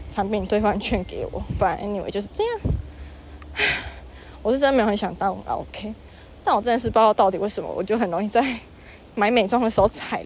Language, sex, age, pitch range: Chinese, female, 20-39, 195-230 Hz